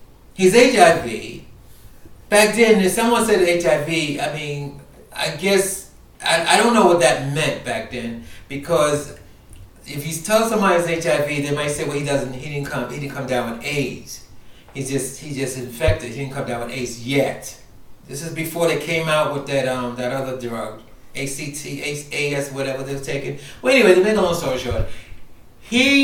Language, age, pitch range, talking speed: English, 30-49, 125-175 Hz, 185 wpm